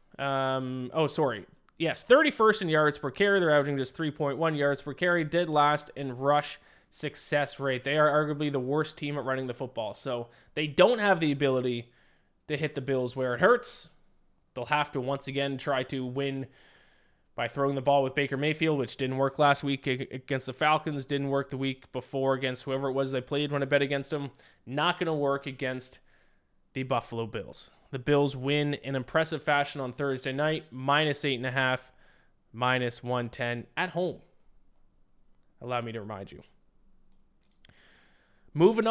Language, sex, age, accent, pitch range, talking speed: English, male, 20-39, American, 130-155 Hz, 175 wpm